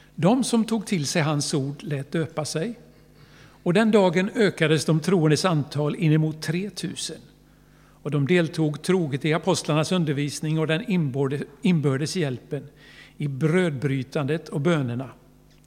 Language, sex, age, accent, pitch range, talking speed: Swedish, male, 60-79, native, 145-180 Hz, 135 wpm